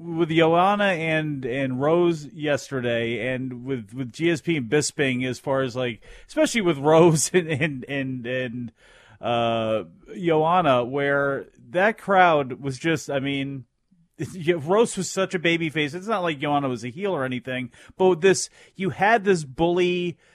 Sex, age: male, 30-49